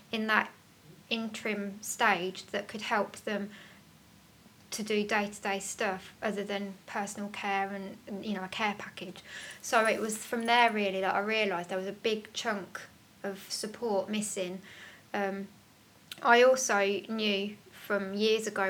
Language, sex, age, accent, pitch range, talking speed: English, female, 20-39, British, 195-215 Hz, 150 wpm